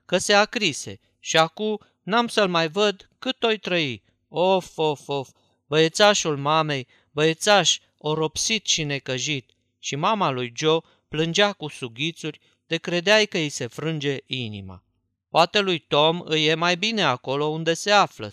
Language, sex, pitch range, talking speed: Romanian, male, 130-175 Hz, 155 wpm